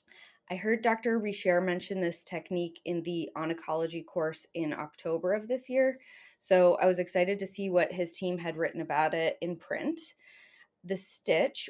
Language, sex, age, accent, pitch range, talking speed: English, female, 20-39, American, 165-205 Hz, 170 wpm